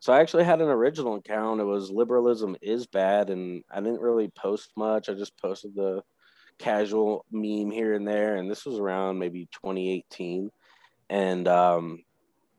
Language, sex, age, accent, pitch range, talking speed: English, male, 20-39, American, 100-120 Hz, 155 wpm